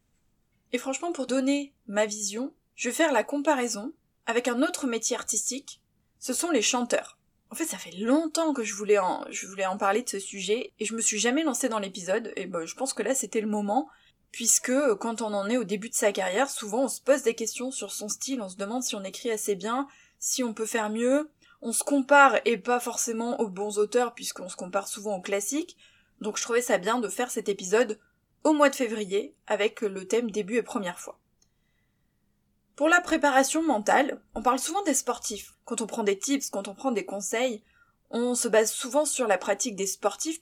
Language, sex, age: French, female, 20-39